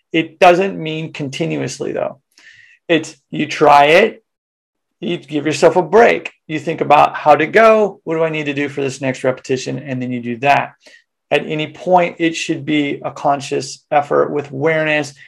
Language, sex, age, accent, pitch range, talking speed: English, male, 30-49, American, 140-170 Hz, 180 wpm